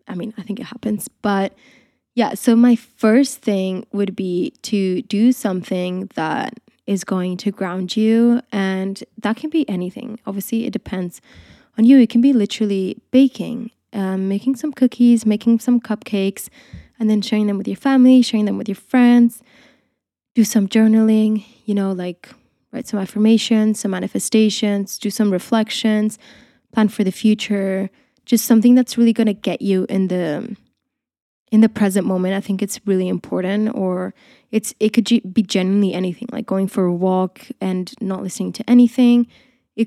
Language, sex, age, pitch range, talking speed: English, female, 20-39, 190-235 Hz, 170 wpm